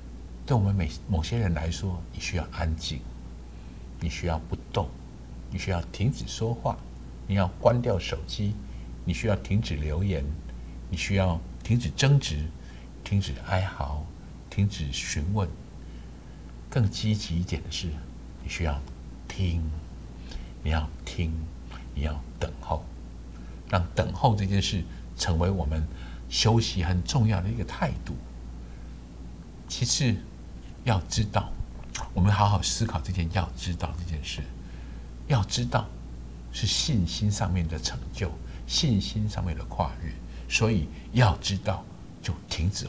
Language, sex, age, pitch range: Chinese, male, 60-79, 65-100 Hz